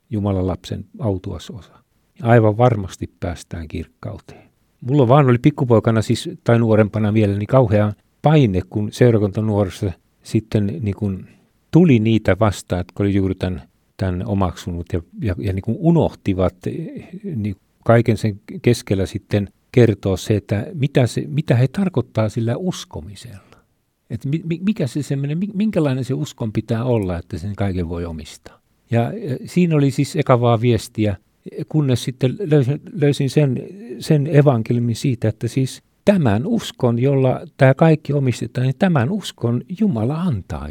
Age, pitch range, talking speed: 50-69, 105-150 Hz, 135 wpm